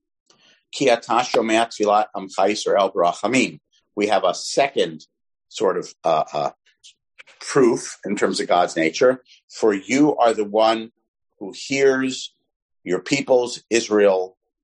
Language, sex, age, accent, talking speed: English, male, 50-69, American, 100 wpm